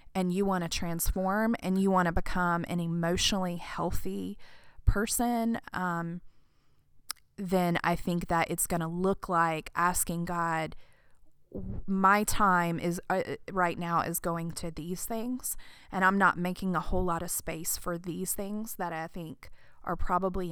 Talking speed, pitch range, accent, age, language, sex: 160 wpm, 170-185 Hz, American, 20-39, English, female